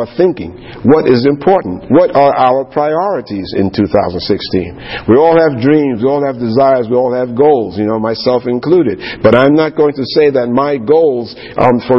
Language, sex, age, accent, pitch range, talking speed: English, male, 50-69, American, 115-140 Hz, 185 wpm